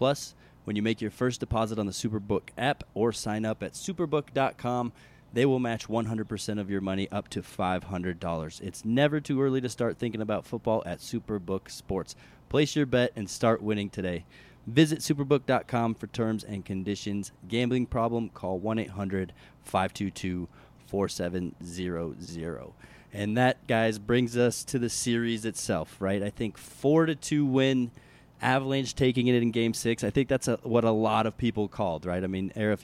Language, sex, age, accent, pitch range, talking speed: English, male, 30-49, American, 100-125 Hz, 165 wpm